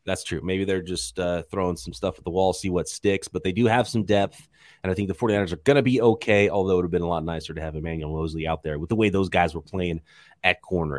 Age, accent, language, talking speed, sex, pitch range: 30-49, American, English, 295 wpm, male, 90-120 Hz